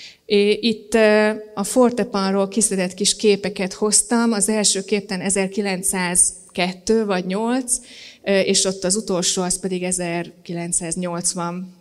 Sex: female